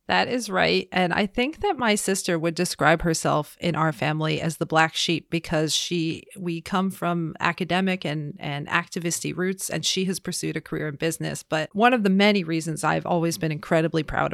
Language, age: English, 40-59